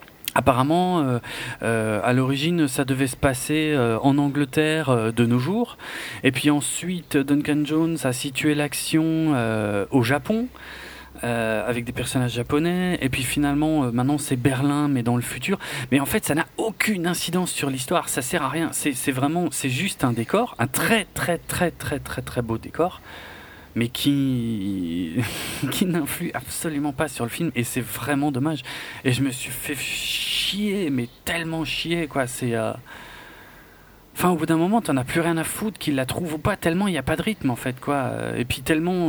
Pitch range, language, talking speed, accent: 130-165 Hz, French, 195 wpm, French